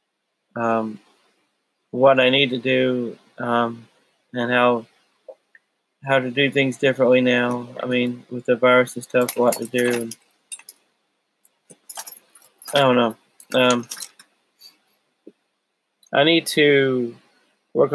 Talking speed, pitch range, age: 115 wpm, 120-135 Hz, 30-49